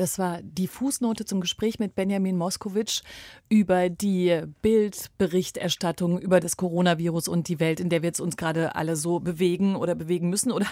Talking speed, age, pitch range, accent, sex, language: 170 wpm, 30-49, 175-200 Hz, German, female, German